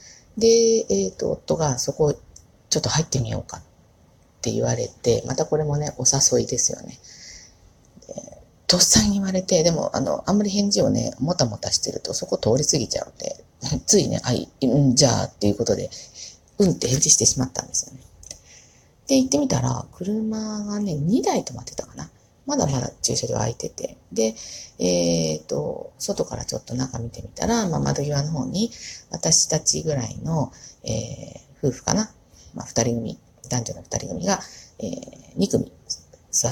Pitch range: 115-155 Hz